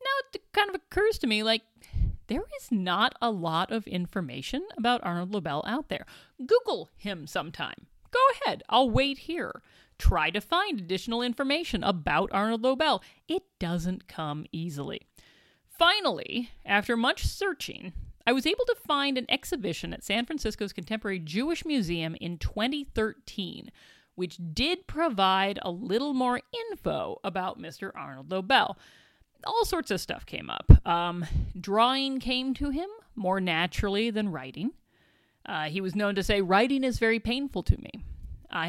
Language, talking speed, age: English, 150 wpm, 40-59